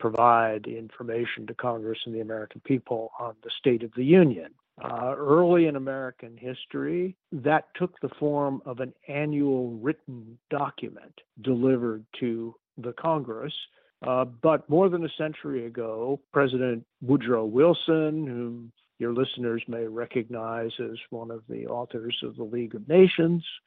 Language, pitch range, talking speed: English, 120-145 Hz, 145 wpm